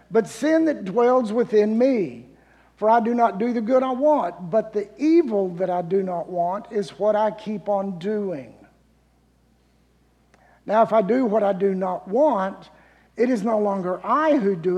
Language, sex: English, male